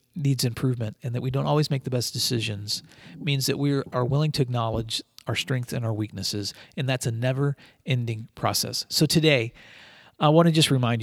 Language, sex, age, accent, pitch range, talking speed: English, male, 40-59, American, 120-145 Hz, 190 wpm